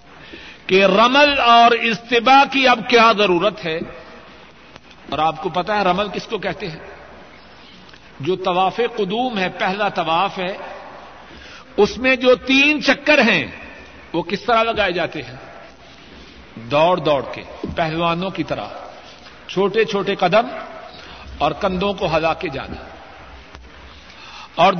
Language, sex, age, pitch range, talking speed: Urdu, male, 60-79, 180-250 Hz, 130 wpm